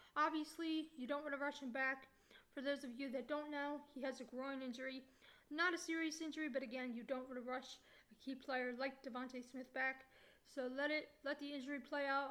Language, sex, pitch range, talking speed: English, female, 255-290 Hz, 220 wpm